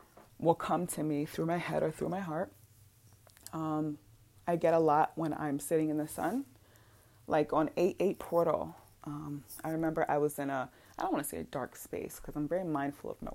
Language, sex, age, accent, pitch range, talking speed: English, female, 20-39, American, 110-160 Hz, 210 wpm